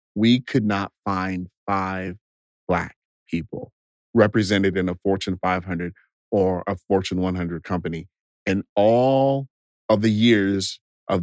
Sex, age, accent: male, 40-59, American